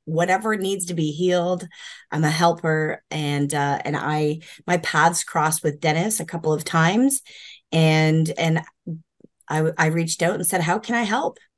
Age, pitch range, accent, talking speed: 30-49, 155-180 Hz, American, 170 wpm